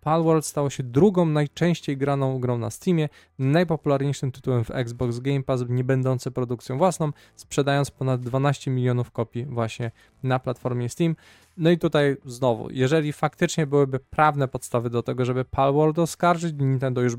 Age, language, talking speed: 20-39, Polish, 155 wpm